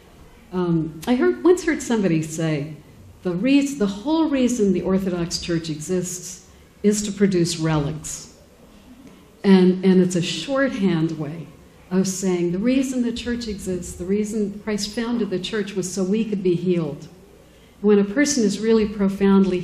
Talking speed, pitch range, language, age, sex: 150 wpm, 175-210 Hz, Arabic, 60-79, female